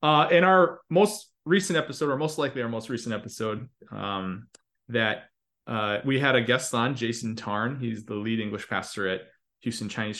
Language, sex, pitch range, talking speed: English, male, 110-140 Hz, 180 wpm